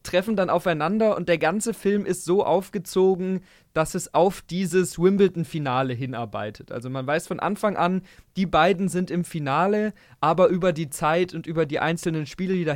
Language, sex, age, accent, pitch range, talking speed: German, male, 20-39, German, 155-190 Hz, 180 wpm